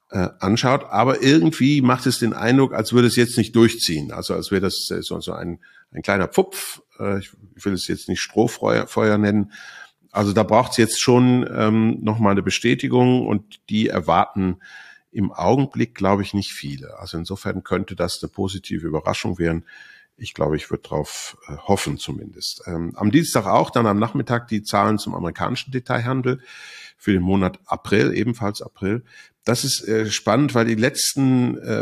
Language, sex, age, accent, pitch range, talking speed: German, male, 50-69, German, 95-120 Hz, 170 wpm